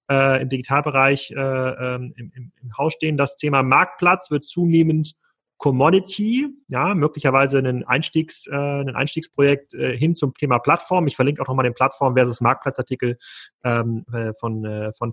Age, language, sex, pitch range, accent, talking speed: 30-49, German, male, 125-150 Hz, German, 140 wpm